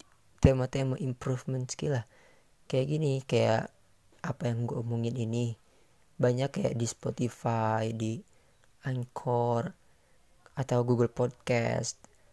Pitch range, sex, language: 120-140 Hz, female, Indonesian